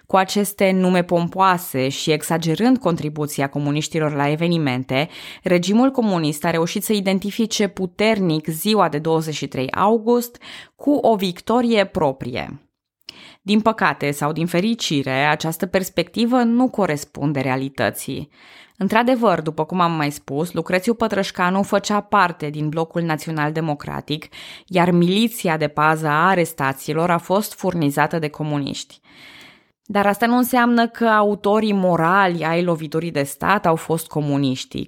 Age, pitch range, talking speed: 20-39, 155-205 Hz, 125 wpm